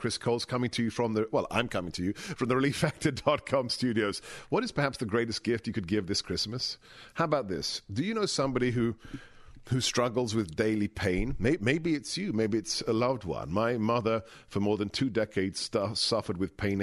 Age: 50-69